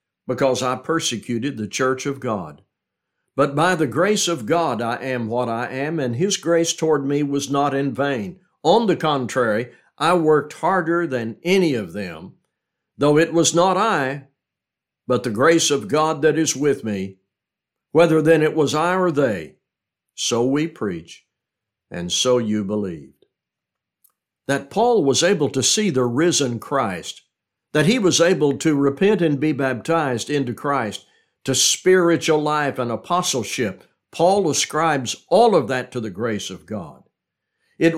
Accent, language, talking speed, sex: American, English, 160 wpm, male